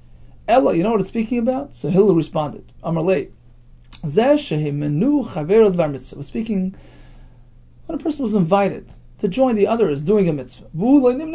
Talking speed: 155 wpm